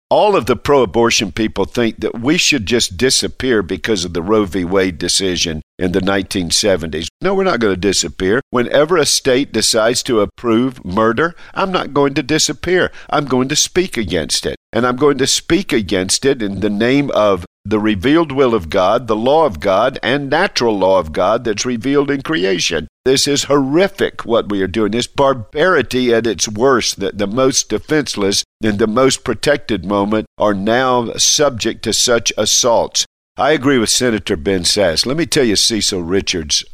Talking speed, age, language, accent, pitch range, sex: 185 wpm, 50-69, English, American, 100-130 Hz, male